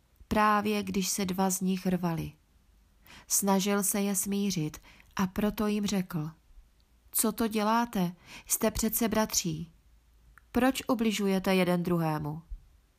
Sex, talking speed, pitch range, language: female, 115 wpm, 185-210 Hz, Czech